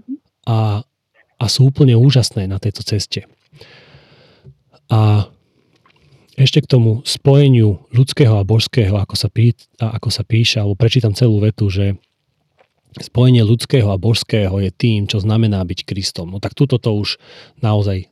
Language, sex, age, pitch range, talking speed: Slovak, male, 30-49, 105-125 Hz, 130 wpm